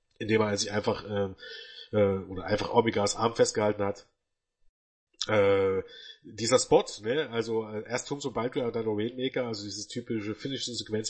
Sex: male